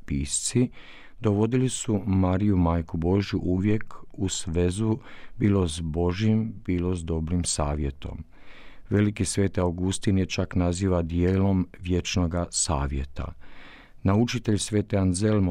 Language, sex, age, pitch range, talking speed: Croatian, male, 50-69, 85-105 Hz, 110 wpm